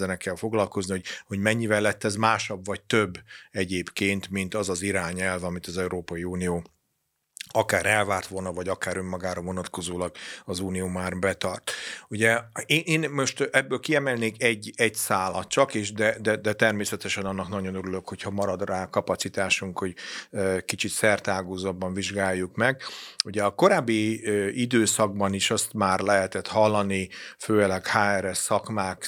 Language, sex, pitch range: Hungarian, male, 95-105 Hz